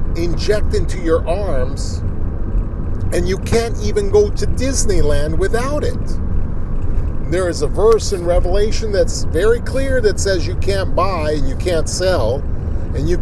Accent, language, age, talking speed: American, English, 50-69, 150 wpm